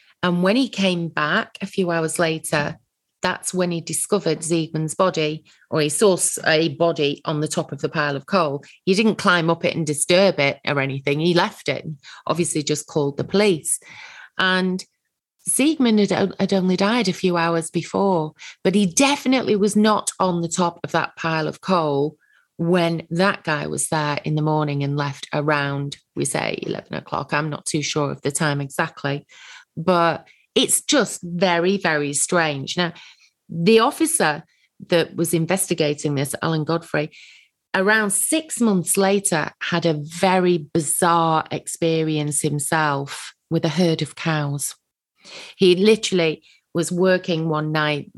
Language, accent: English, British